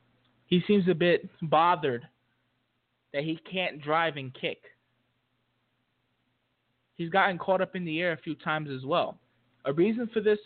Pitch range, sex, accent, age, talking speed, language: 130-185 Hz, male, American, 20-39, 155 wpm, English